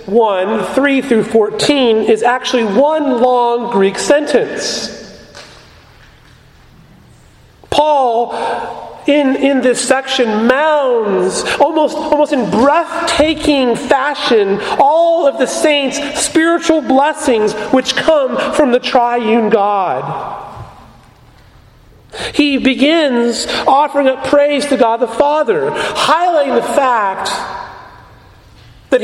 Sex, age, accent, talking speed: male, 40-59, American, 95 wpm